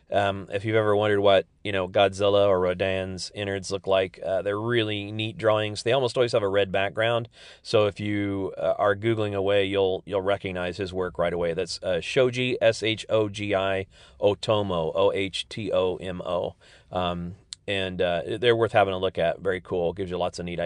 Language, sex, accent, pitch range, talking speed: English, male, American, 95-110 Hz, 180 wpm